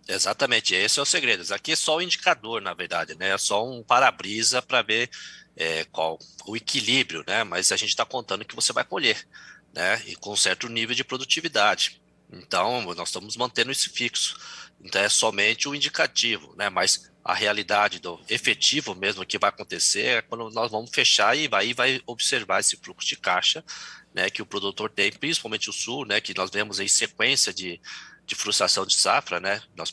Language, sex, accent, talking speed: Portuguese, male, Brazilian, 200 wpm